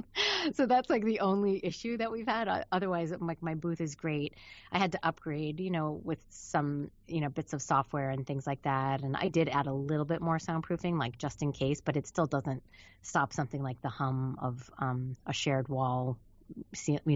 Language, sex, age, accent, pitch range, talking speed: English, female, 30-49, American, 140-200 Hz, 210 wpm